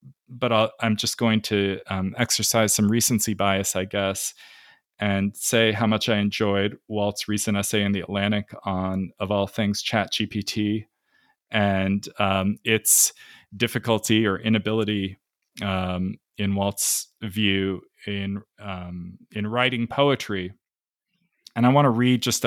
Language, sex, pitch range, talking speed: English, male, 100-115 Hz, 135 wpm